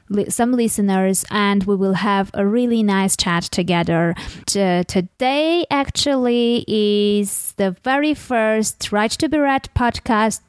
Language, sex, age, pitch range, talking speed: English, female, 20-39, 190-235 Hz, 135 wpm